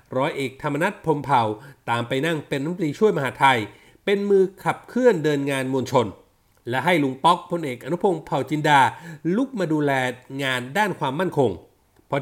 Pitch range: 135-185 Hz